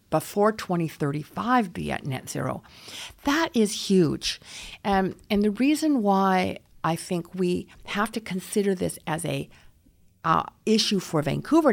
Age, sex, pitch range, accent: 50-69, female, 155-210 Hz, American